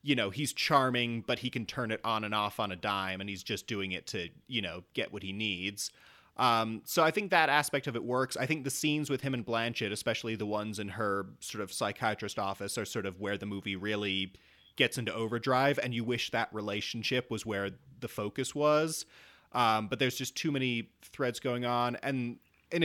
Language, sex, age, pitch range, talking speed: English, male, 30-49, 105-140 Hz, 220 wpm